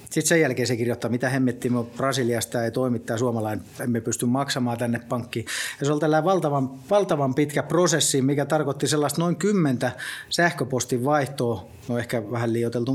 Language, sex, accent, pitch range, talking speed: Finnish, male, native, 120-155 Hz, 160 wpm